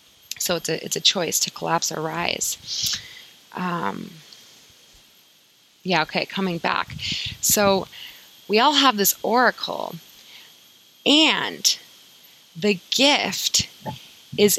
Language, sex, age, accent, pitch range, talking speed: English, female, 20-39, American, 175-225 Hz, 100 wpm